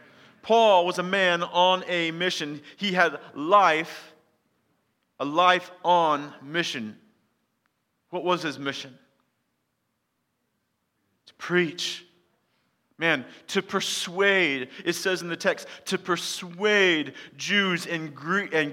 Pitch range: 160-205 Hz